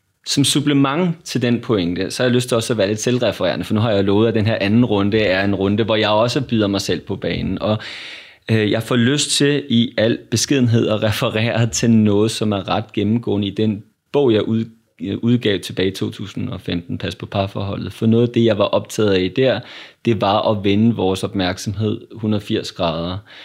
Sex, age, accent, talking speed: male, 30-49, native, 205 wpm